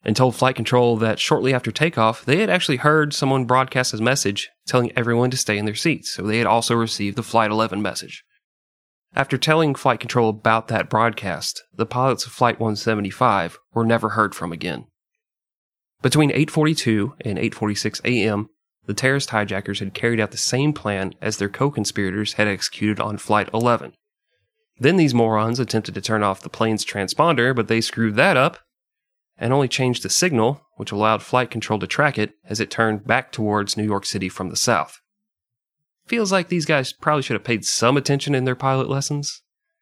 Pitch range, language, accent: 105-135 Hz, English, American